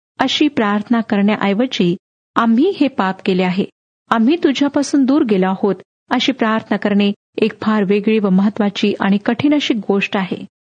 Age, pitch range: 40-59, 210-275 Hz